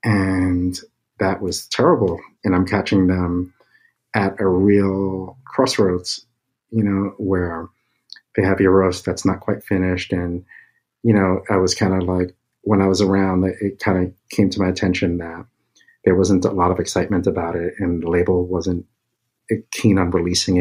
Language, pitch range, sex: English, 90-100 Hz, male